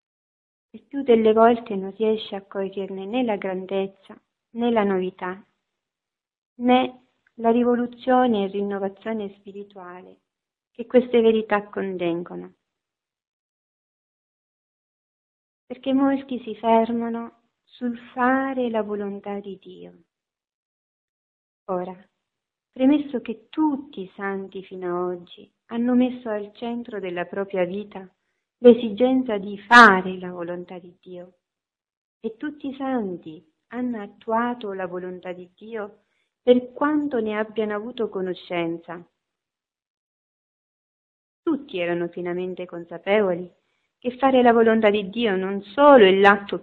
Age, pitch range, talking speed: 40-59, 180-235 Hz, 110 wpm